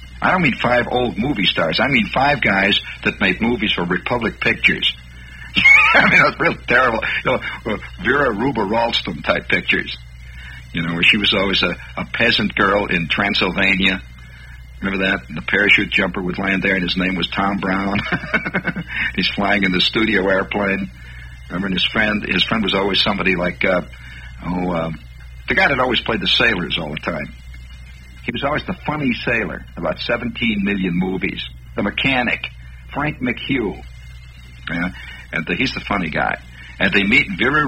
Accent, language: American, English